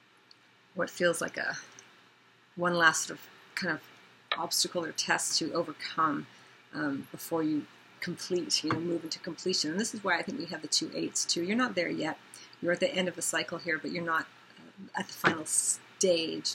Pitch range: 165-185 Hz